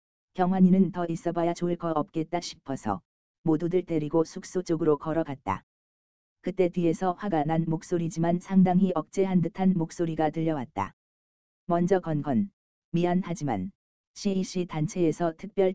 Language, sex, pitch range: Korean, female, 155-180 Hz